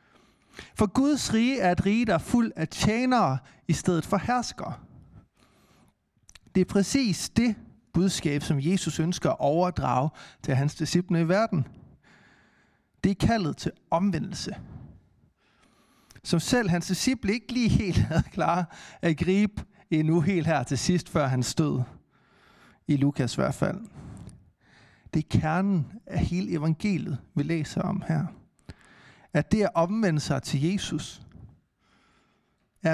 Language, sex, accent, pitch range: Danish, male, native, 145-190 Hz